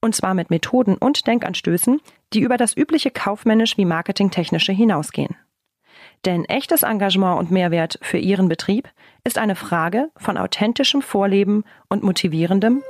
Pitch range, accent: 180-235 Hz, German